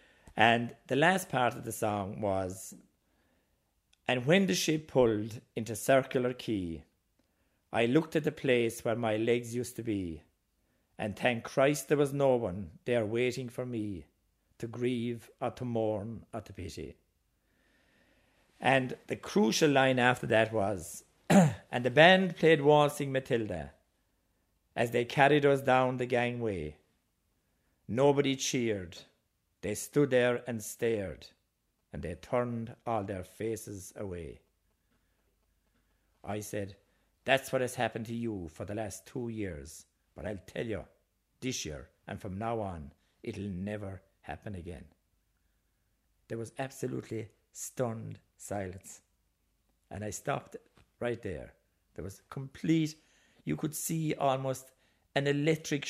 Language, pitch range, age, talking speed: English, 95-130 Hz, 50-69, 135 wpm